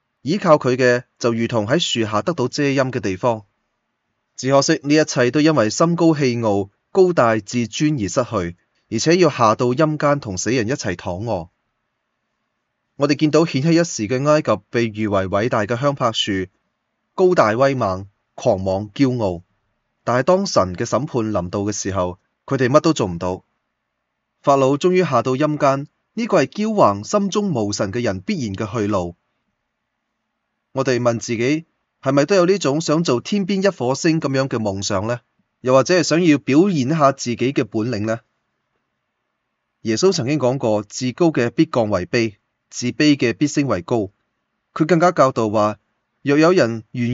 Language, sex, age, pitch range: Chinese, male, 20-39, 110-150 Hz